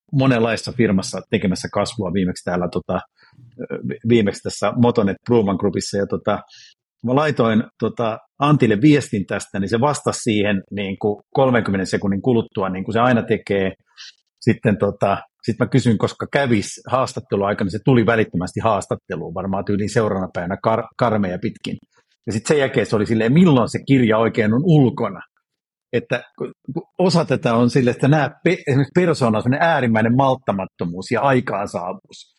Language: Finnish